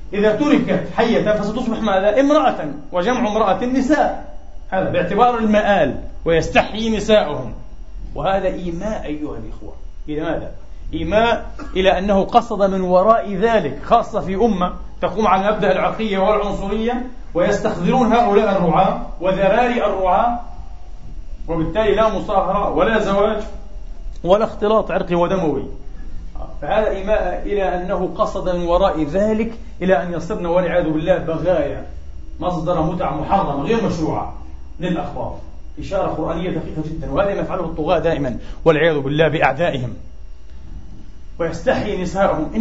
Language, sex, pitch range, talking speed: Arabic, male, 155-205 Hz, 115 wpm